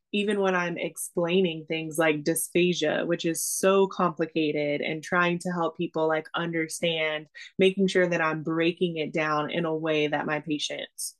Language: English